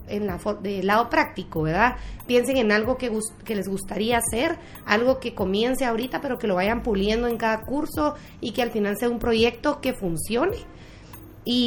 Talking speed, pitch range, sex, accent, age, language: 185 wpm, 200-245 Hz, female, Mexican, 30-49, Spanish